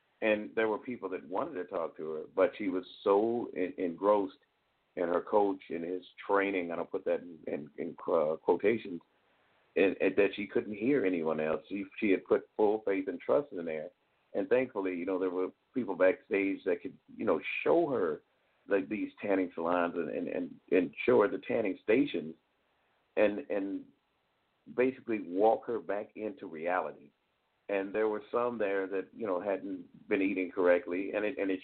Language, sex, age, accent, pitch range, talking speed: English, male, 50-69, American, 95-115 Hz, 190 wpm